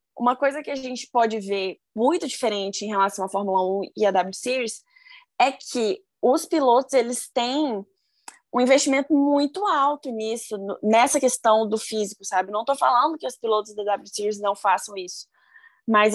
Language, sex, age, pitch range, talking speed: Portuguese, female, 20-39, 220-280 Hz, 180 wpm